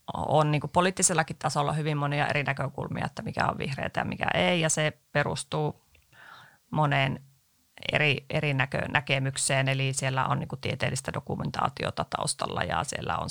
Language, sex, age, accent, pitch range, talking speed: Finnish, female, 30-49, native, 140-170 Hz, 145 wpm